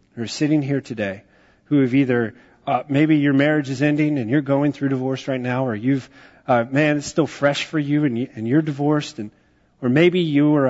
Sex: male